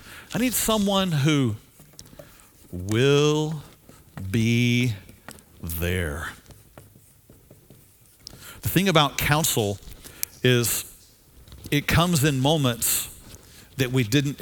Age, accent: 50-69, American